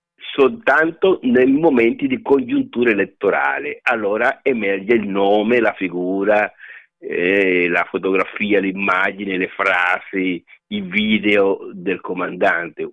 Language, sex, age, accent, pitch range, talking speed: Italian, male, 50-69, native, 95-125 Hz, 100 wpm